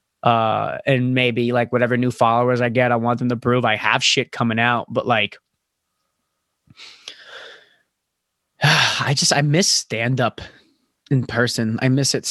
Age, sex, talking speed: 20-39, male, 155 wpm